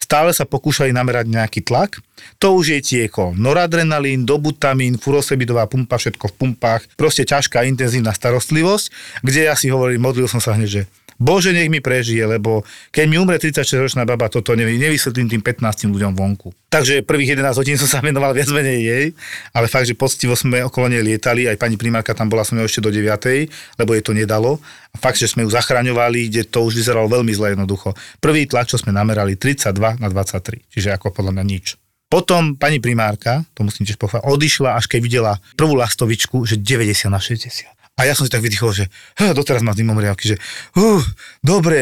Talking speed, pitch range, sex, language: 195 wpm, 110-135 Hz, male, Slovak